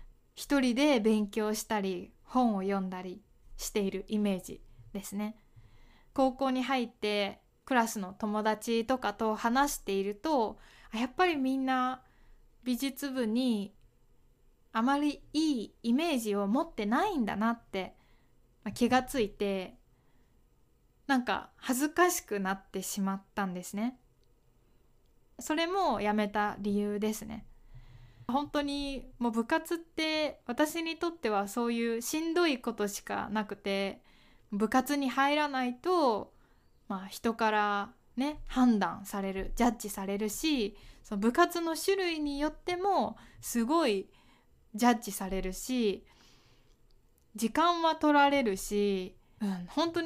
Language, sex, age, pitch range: Japanese, female, 20-39, 205-280 Hz